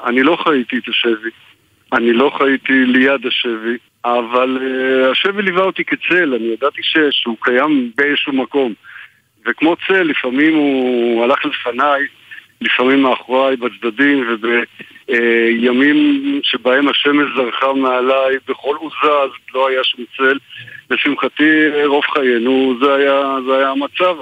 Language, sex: Hebrew, male